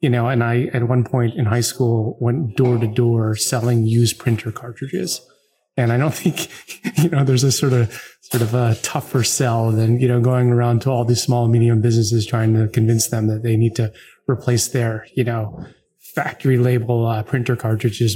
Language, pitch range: English, 115-130 Hz